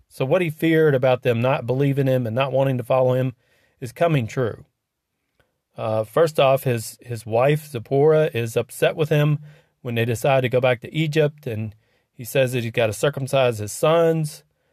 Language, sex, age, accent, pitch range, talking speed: English, male, 40-59, American, 120-150 Hz, 190 wpm